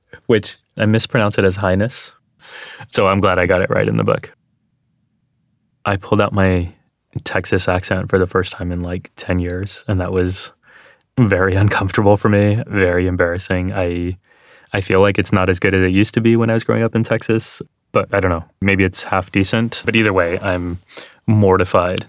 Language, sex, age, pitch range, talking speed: English, male, 20-39, 90-105 Hz, 195 wpm